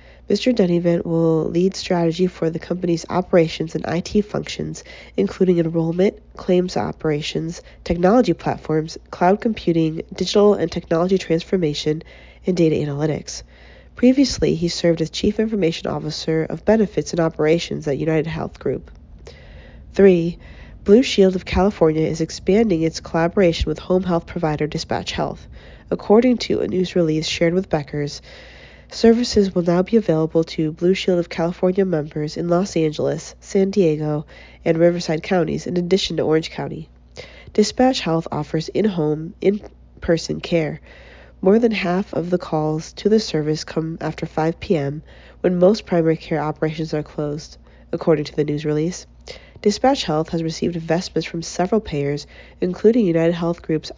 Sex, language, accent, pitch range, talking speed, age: female, English, American, 155-190 Hz, 145 wpm, 40-59